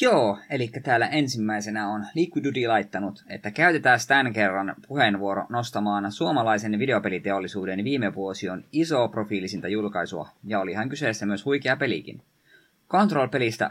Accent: native